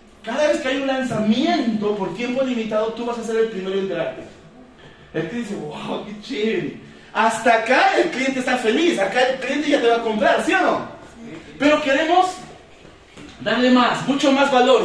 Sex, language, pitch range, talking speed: male, Spanish, 220-265 Hz, 190 wpm